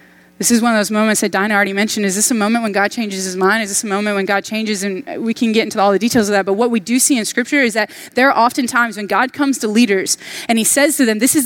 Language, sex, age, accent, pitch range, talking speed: English, female, 20-39, American, 210-280 Hz, 315 wpm